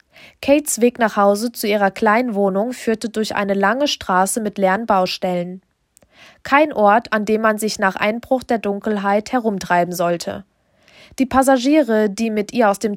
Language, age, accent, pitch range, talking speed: German, 20-39, German, 195-240 Hz, 155 wpm